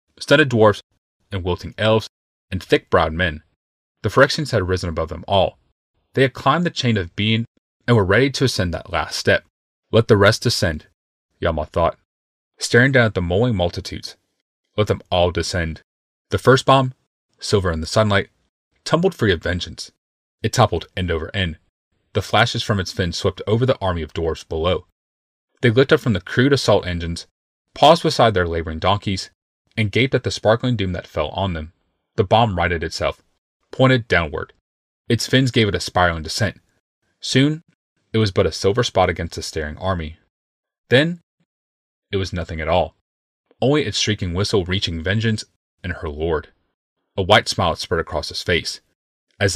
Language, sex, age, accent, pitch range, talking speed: English, male, 30-49, American, 85-115 Hz, 175 wpm